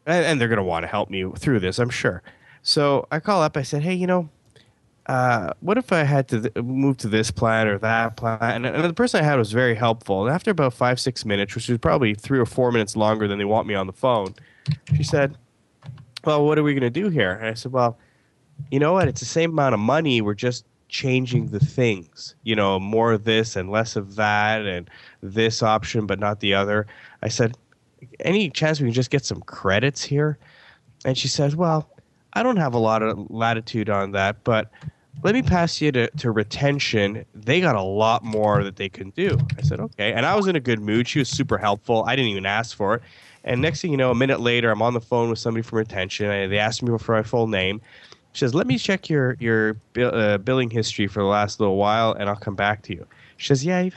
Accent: American